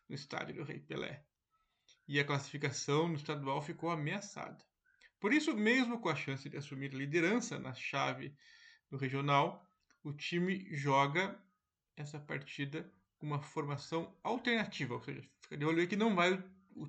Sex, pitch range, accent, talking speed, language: male, 145-205 Hz, Brazilian, 155 wpm, Portuguese